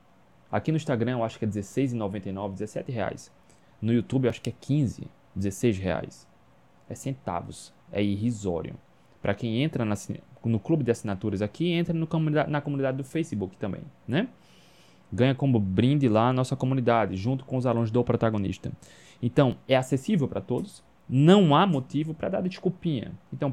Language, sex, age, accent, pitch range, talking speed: Portuguese, male, 20-39, Brazilian, 105-150 Hz, 165 wpm